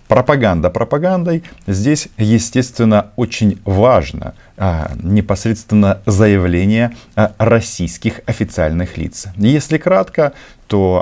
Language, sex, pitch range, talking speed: Russian, male, 85-115 Hz, 85 wpm